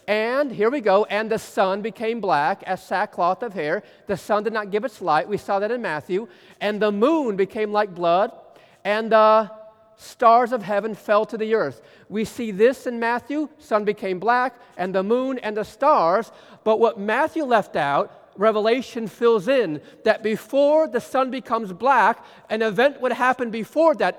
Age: 40-59